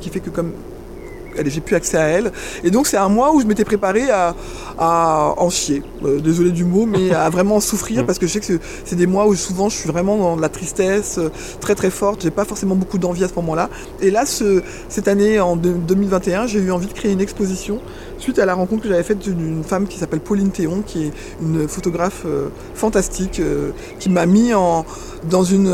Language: French